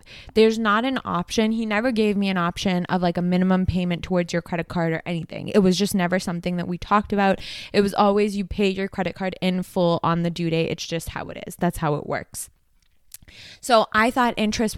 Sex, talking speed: female, 230 wpm